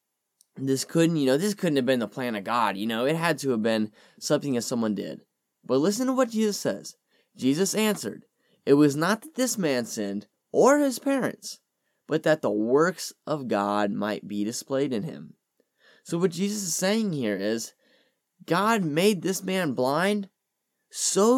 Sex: male